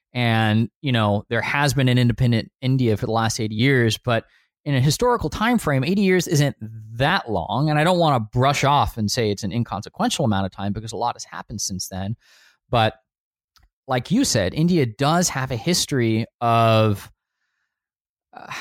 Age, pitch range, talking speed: 20-39, 110-140 Hz, 185 wpm